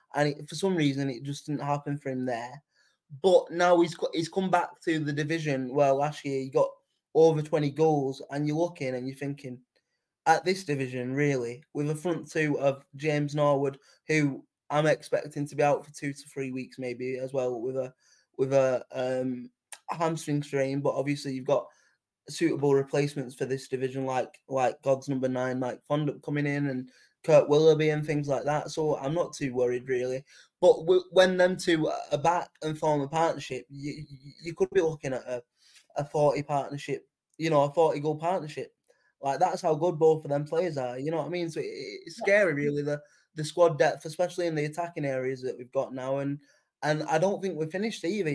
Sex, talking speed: male, 200 wpm